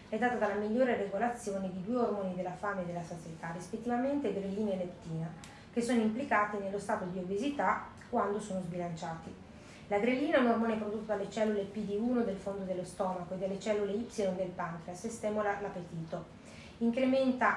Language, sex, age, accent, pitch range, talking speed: Italian, female, 30-49, native, 180-230 Hz, 170 wpm